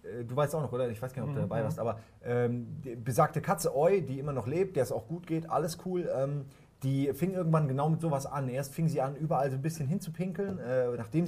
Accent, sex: German, male